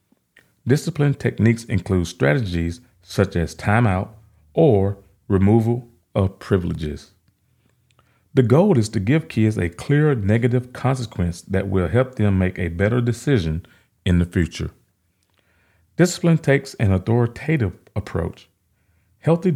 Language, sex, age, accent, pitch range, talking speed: English, male, 40-59, American, 95-125 Hz, 115 wpm